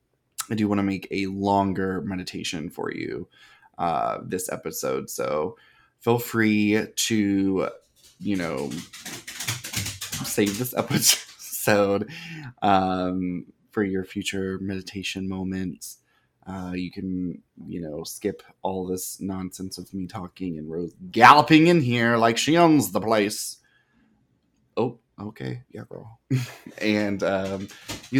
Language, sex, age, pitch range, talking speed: English, male, 20-39, 95-115 Hz, 120 wpm